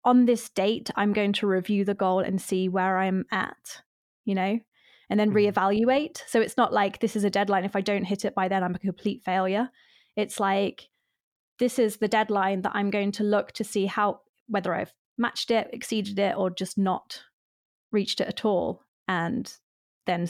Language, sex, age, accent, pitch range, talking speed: English, female, 20-39, British, 195-240 Hz, 200 wpm